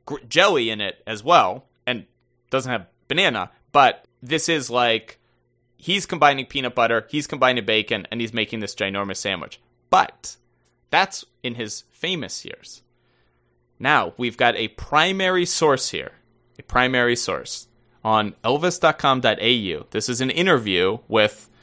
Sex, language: male, English